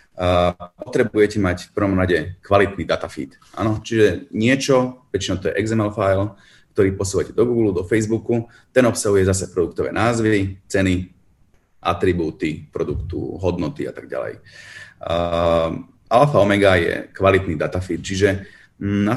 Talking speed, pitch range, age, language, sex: 130 wpm, 90-115 Hz, 30-49, Slovak, male